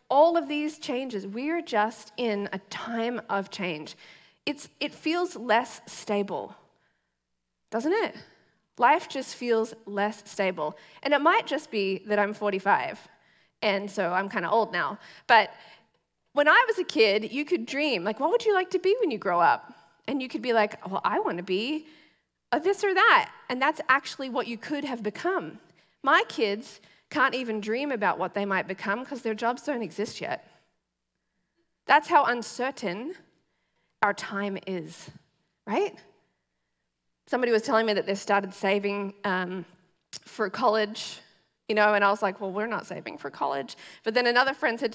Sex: female